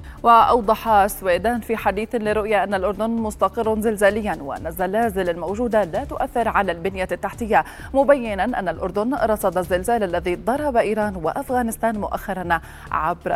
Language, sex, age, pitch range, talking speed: Arabic, female, 30-49, 185-240 Hz, 125 wpm